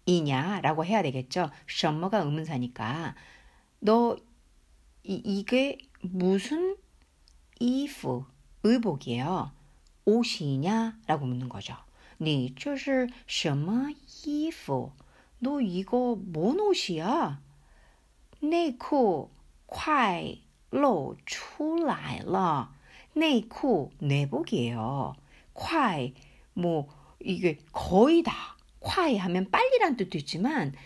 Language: Korean